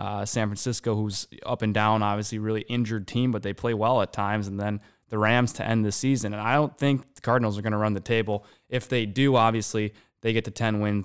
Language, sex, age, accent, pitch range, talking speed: English, male, 20-39, American, 105-125 Hz, 250 wpm